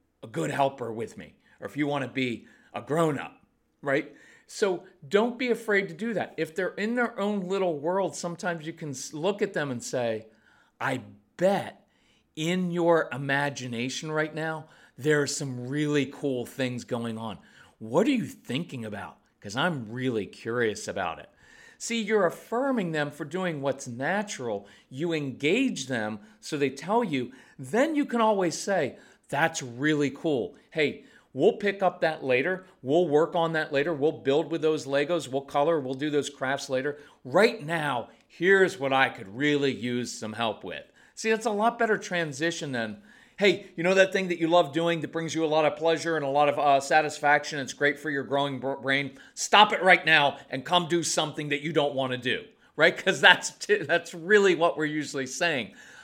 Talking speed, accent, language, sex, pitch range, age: 190 wpm, American, English, male, 140-185 Hz, 40-59